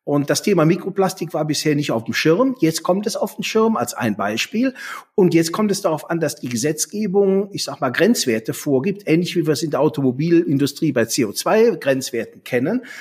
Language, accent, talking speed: German, German, 200 wpm